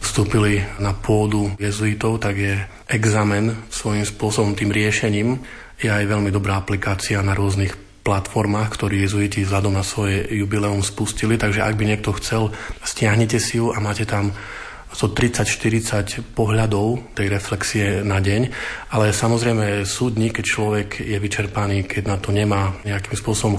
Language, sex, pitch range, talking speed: Slovak, male, 100-110 Hz, 150 wpm